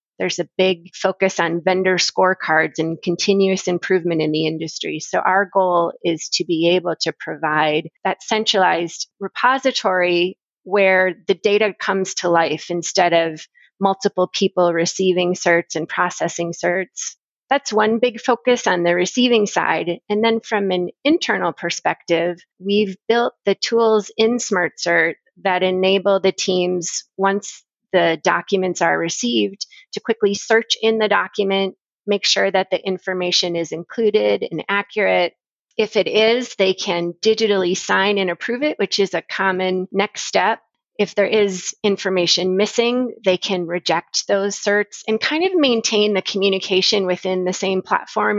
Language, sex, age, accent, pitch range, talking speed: English, female, 30-49, American, 170-205 Hz, 150 wpm